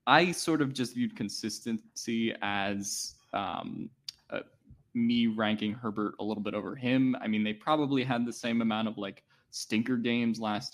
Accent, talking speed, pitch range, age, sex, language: American, 170 wpm, 105-130 Hz, 10-29, male, English